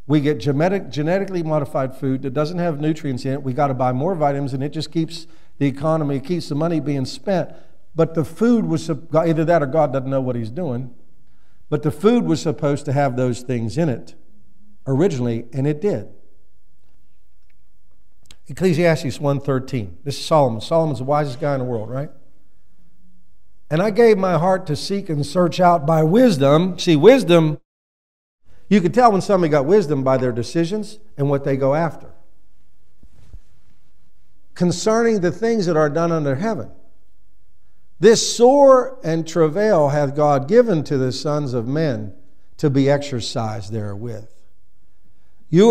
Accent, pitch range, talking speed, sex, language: American, 125-165 Hz, 165 wpm, male, English